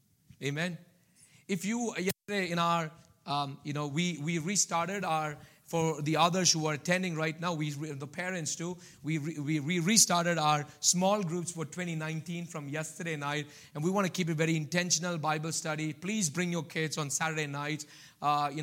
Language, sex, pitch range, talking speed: English, male, 155-180 Hz, 180 wpm